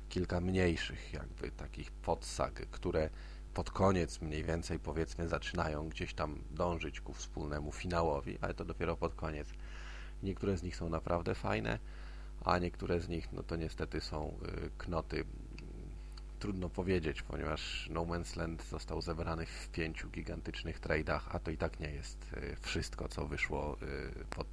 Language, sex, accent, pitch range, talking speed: Polish, male, native, 80-85 Hz, 145 wpm